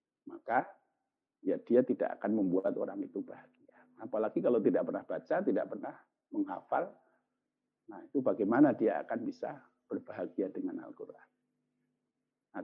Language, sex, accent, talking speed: Indonesian, male, native, 130 wpm